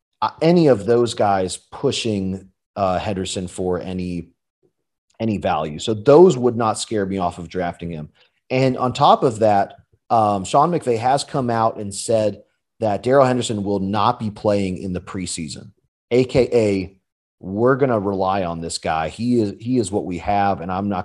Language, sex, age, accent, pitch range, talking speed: English, male, 30-49, American, 95-130 Hz, 180 wpm